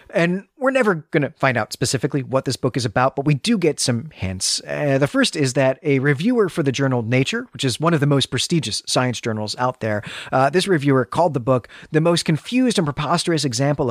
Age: 30-49